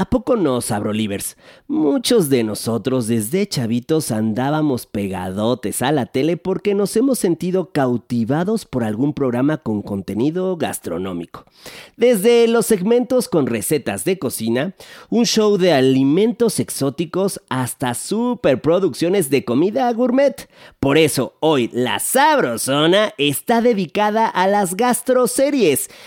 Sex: male